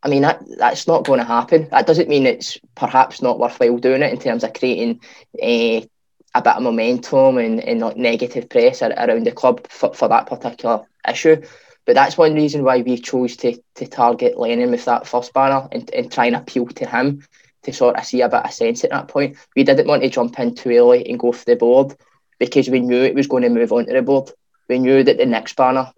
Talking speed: 240 wpm